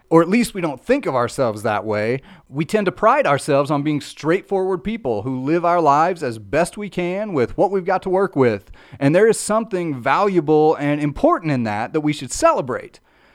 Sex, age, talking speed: male, 30-49, 210 wpm